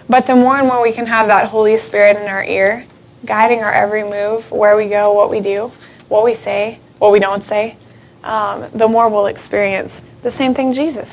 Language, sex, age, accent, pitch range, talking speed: English, female, 20-39, American, 210-255 Hz, 215 wpm